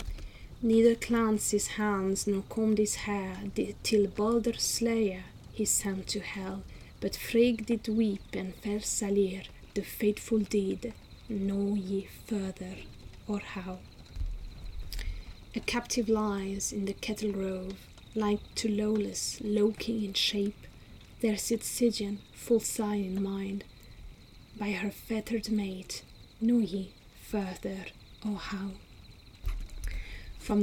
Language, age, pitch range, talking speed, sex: English, 30-49, 190-215 Hz, 120 wpm, female